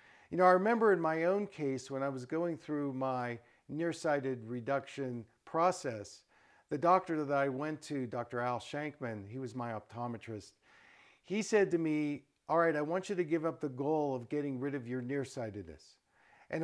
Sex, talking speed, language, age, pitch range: male, 185 wpm, English, 50-69, 130-170 Hz